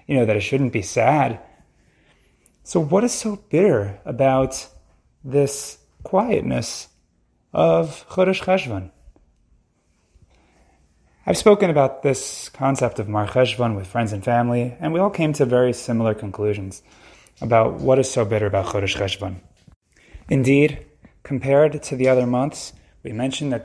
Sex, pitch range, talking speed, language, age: male, 105-145 Hz, 140 wpm, English, 30-49